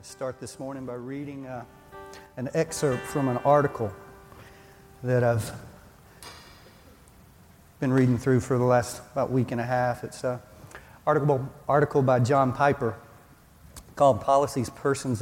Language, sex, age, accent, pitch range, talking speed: English, male, 40-59, American, 120-150 Hz, 135 wpm